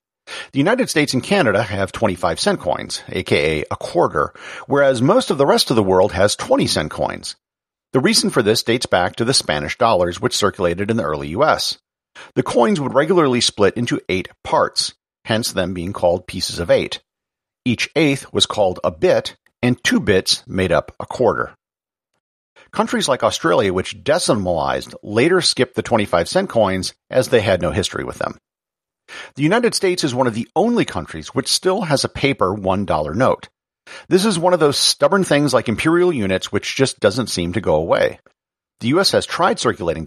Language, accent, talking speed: English, American, 185 wpm